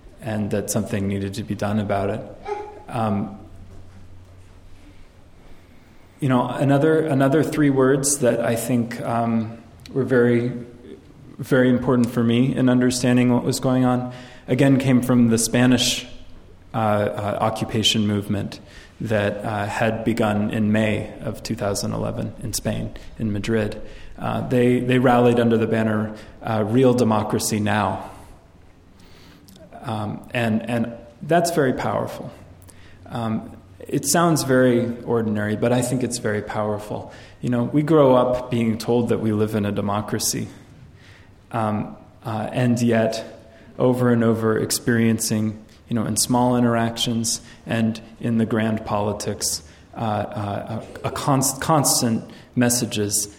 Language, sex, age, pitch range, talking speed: English, male, 20-39, 105-125 Hz, 135 wpm